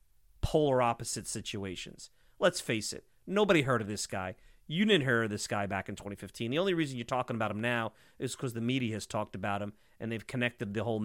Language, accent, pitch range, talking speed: English, American, 105-135 Hz, 225 wpm